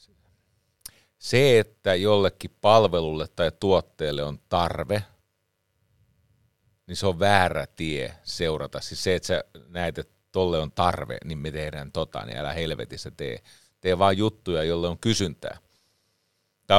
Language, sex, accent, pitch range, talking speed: Finnish, male, native, 85-110 Hz, 135 wpm